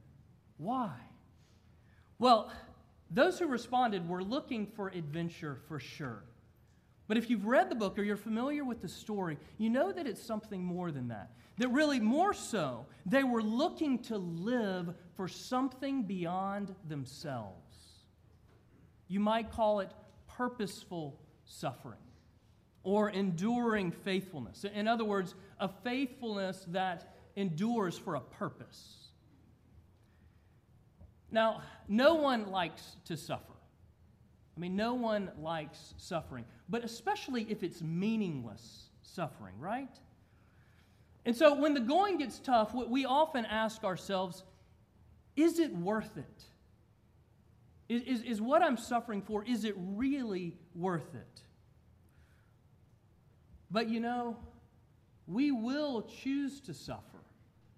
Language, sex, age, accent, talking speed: English, male, 40-59, American, 120 wpm